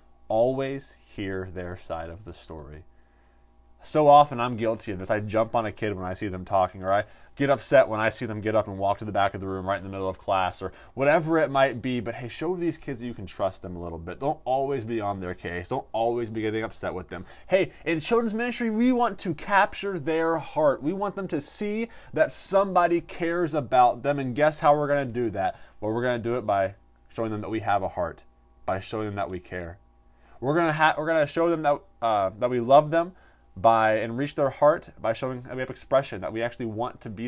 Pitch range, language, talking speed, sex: 95-140 Hz, English, 255 wpm, male